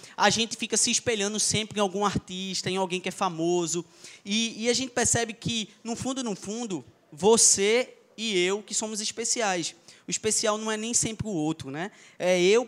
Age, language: 20-39, Portuguese